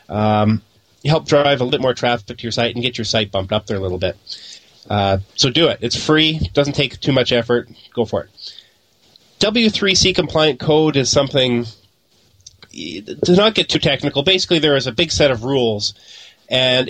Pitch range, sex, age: 115-145 Hz, male, 30-49